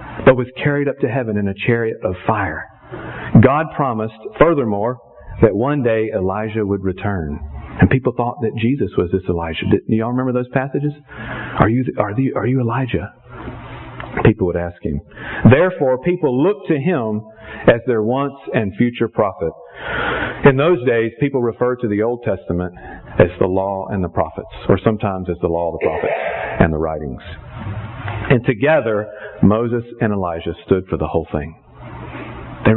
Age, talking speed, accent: 50-69, 170 wpm, American